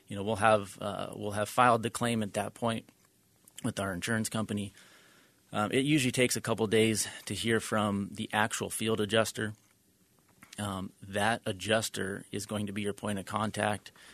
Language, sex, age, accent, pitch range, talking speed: English, male, 30-49, American, 100-110 Hz, 180 wpm